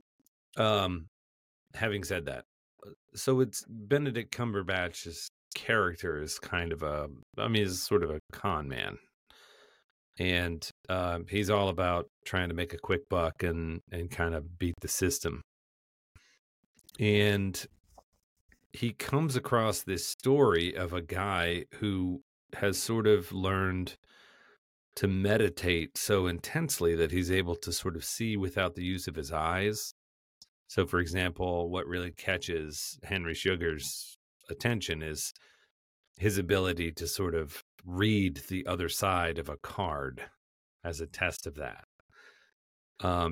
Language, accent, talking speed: English, American, 135 wpm